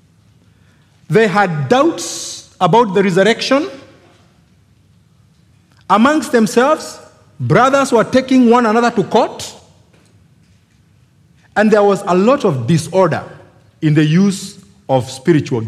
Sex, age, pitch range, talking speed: male, 50-69, 150-220 Hz, 105 wpm